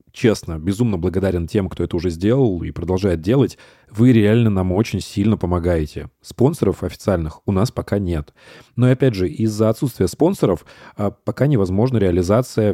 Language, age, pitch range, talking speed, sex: Russian, 30-49, 95-125 Hz, 150 wpm, male